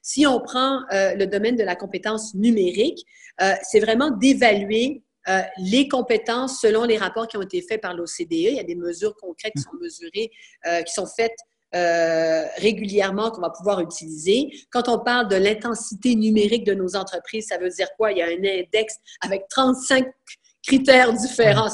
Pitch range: 195-265 Hz